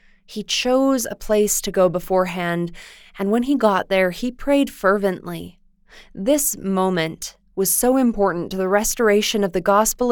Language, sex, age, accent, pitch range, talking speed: English, female, 20-39, American, 185-225 Hz, 155 wpm